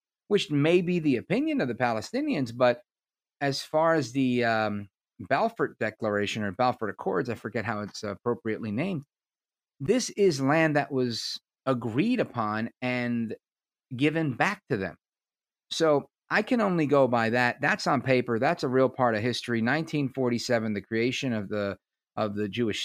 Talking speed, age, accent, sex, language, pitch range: 160 wpm, 40-59, American, male, English, 105-165 Hz